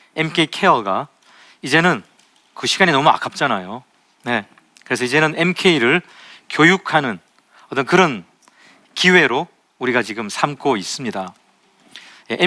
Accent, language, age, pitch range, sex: native, Korean, 40-59, 140-190 Hz, male